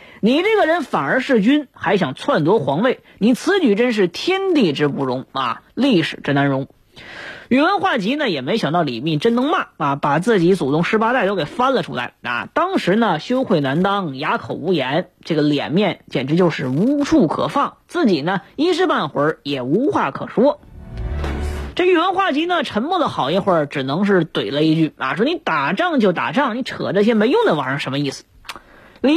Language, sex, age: Chinese, female, 20-39